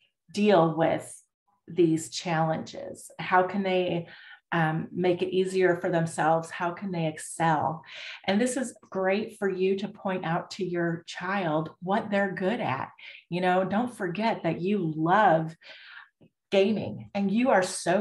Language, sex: English, female